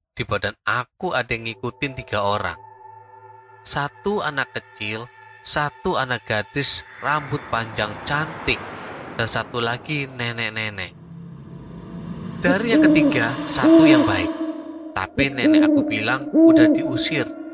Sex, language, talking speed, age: male, Indonesian, 115 wpm, 20-39